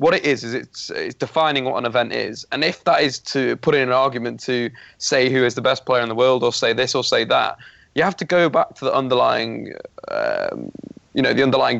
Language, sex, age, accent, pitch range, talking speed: English, male, 20-39, British, 120-145 Hz, 250 wpm